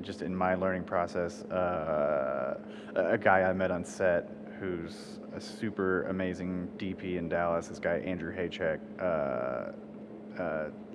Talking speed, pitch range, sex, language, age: 135 wpm, 90-110 Hz, male, English, 30-49